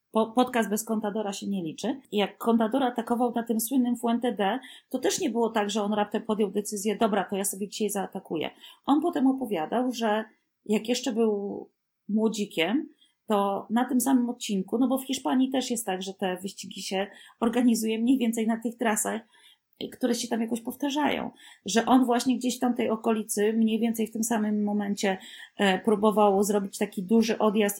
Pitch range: 195-240 Hz